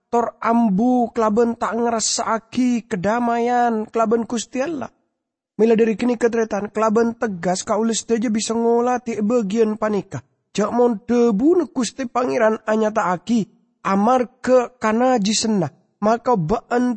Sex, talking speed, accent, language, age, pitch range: male, 125 wpm, Indonesian, English, 20-39, 170-230 Hz